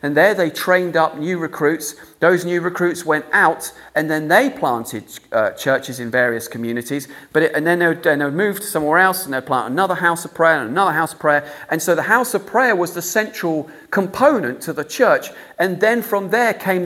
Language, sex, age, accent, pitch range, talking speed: English, male, 40-59, British, 130-180 Hz, 215 wpm